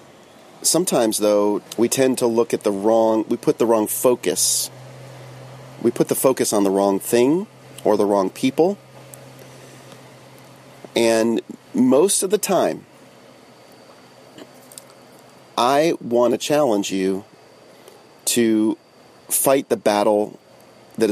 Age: 40-59